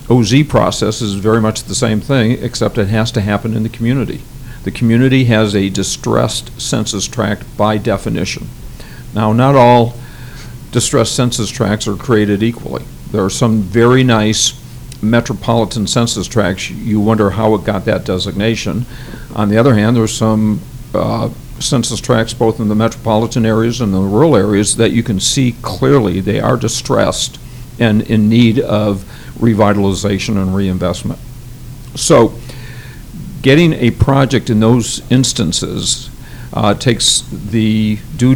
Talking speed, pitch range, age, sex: 145 wpm, 105-125 Hz, 50-69, male